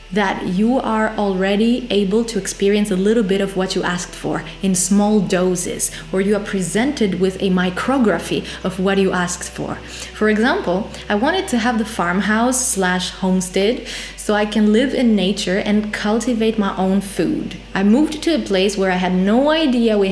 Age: 20-39